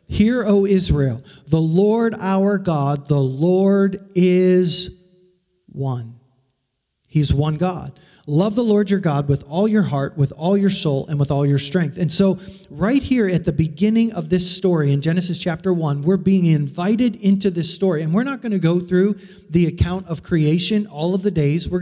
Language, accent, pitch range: English, American, 150-190 Hz